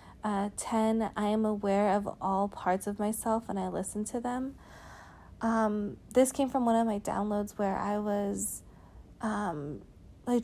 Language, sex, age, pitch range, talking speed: English, female, 20-39, 195-230 Hz, 160 wpm